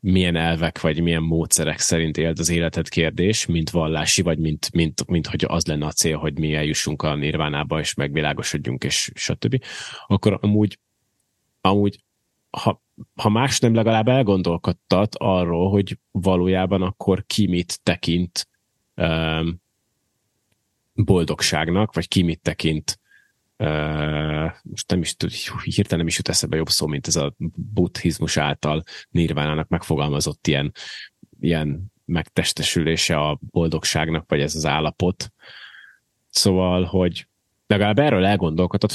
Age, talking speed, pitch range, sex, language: 30-49, 130 wpm, 80-100 Hz, male, Hungarian